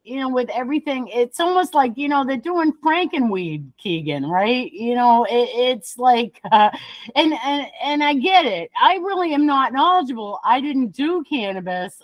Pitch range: 190-280 Hz